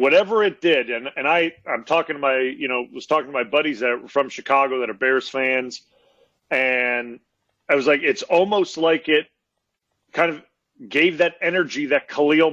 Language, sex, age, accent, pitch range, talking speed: English, male, 40-59, American, 140-165 Hz, 190 wpm